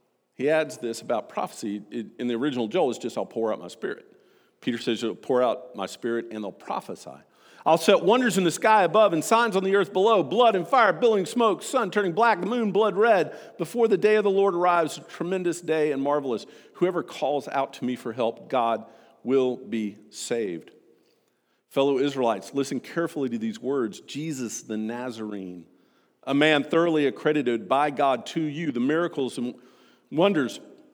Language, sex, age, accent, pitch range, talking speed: English, male, 50-69, American, 135-205 Hz, 185 wpm